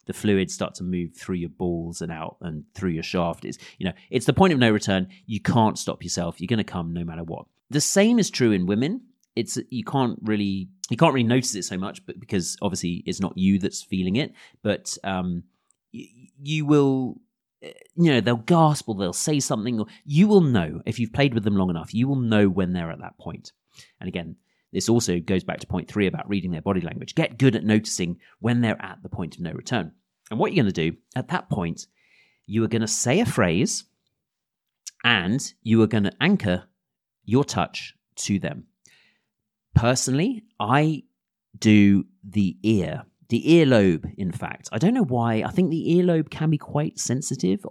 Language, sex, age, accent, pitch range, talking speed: English, male, 30-49, British, 90-140 Hz, 210 wpm